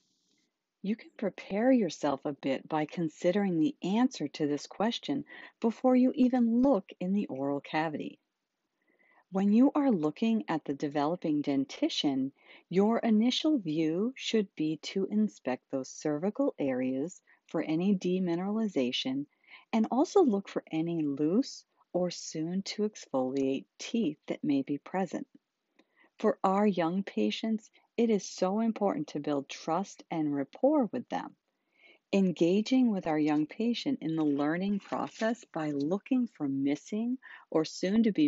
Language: English